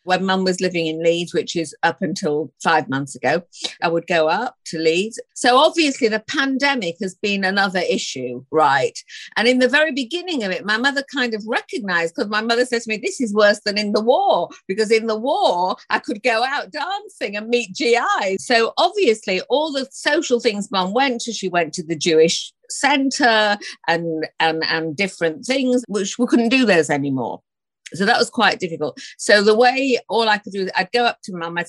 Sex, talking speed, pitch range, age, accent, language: female, 205 wpm, 170-240 Hz, 50-69, British, English